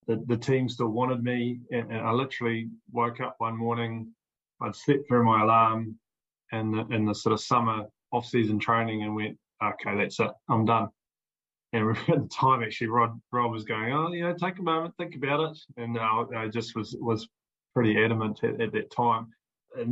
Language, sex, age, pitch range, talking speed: English, male, 20-39, 110-125 Hz, 200 wpm